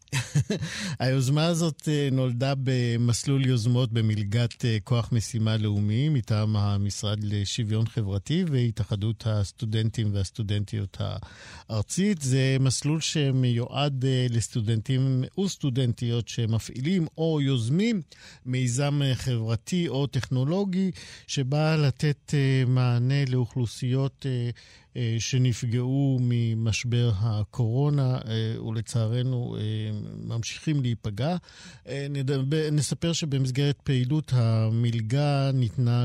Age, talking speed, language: 50-69, 75 wpm, Hebrew